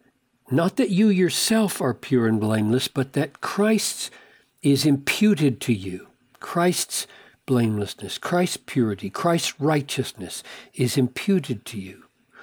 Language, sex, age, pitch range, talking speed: English, male, 60-79, 125-165 Hz, 120 wpm